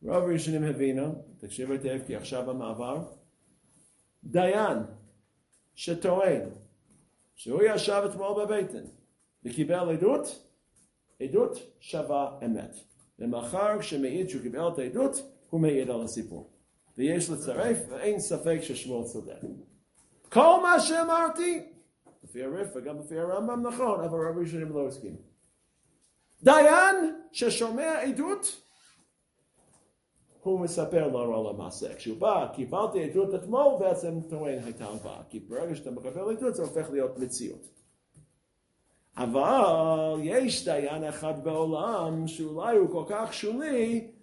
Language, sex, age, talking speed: English, male, 50-69, 95 wpm